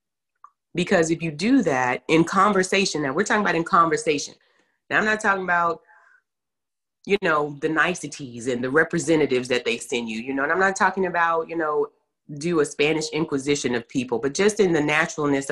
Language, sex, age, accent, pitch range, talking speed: English, female, 30-49, American, 155-220 Hz, 190 wpm